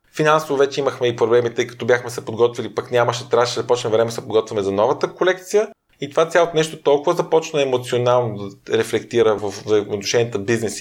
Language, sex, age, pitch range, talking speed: Bulgarian, male, 20-39, 120-155 Hz, 190 wpm